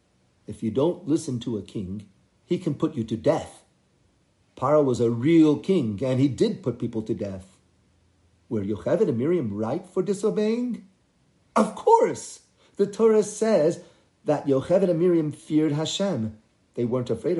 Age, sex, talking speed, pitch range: 50-69, male, 160 wpm, 115-170 Hz